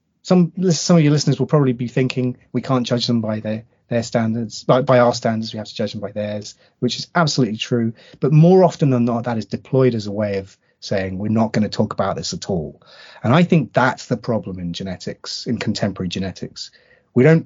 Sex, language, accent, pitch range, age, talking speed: male, English, British, 110-150 Hz, 30-49, 230 wpm